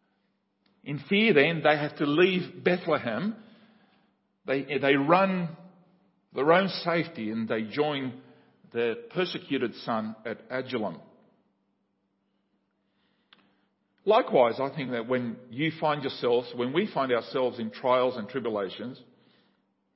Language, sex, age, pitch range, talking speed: English, male, 50-69, 120-170 Hz, 115 wpm